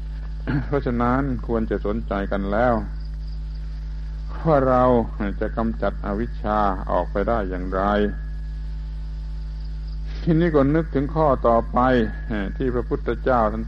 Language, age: Thai, 60-79